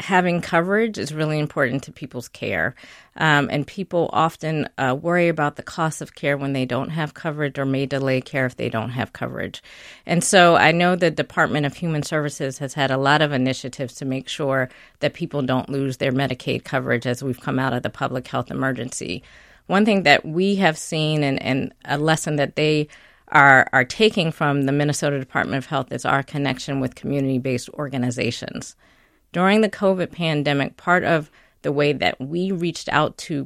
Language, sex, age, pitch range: English, female, 40-59, 135-160 Hz